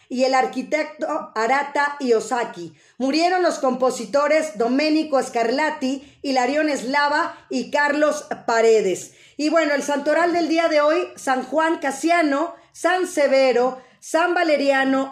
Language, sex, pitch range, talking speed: Spanish, female, 250-305 Hz, 120 wpm